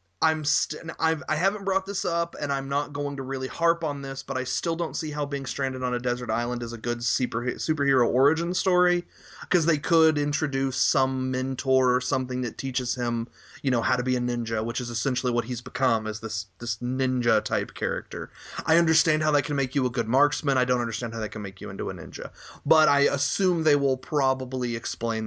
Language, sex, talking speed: English, male, 225 wpm